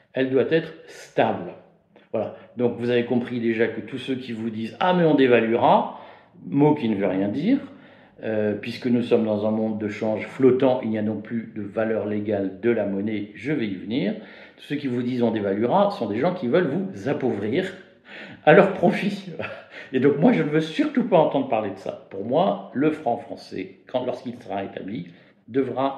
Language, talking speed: French, 215 wpm